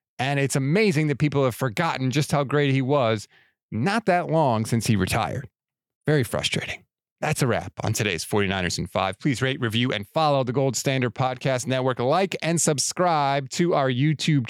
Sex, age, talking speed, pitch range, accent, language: male, 30-49, 180 wpm, 115-155 Hz, American, English